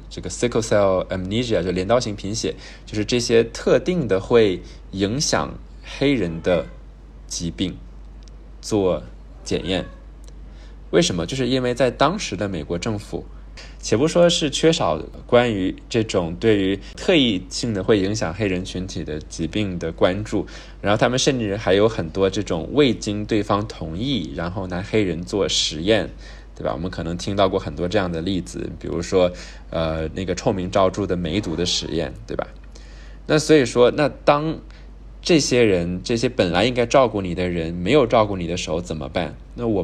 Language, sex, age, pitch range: Chinese, male, 20-39, 80-110 Hz